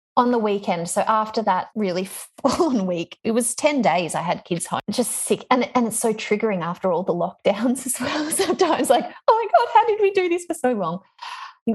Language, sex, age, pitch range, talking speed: English, female, 20-39, 180-230 Hz, 225 wpm